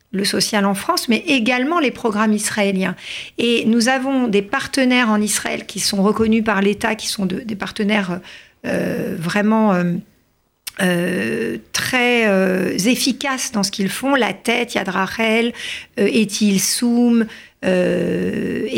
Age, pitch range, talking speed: 50-69, 200-235 Hz, 130 wpm